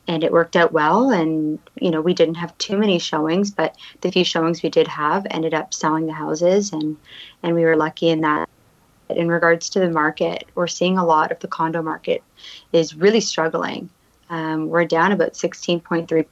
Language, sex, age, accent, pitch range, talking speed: English, female, 20-39, American, 160-190 Hz, 200 wpm